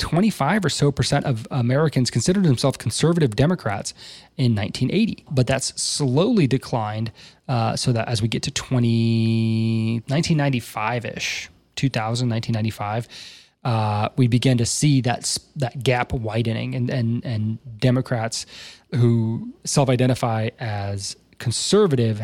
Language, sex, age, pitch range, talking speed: English, male, 20-39, 115-140 Hz, 120 wpm